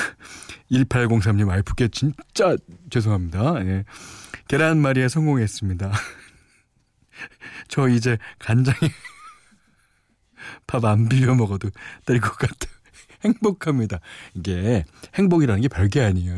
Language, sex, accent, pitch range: Korean, male, native, 100-165 Hz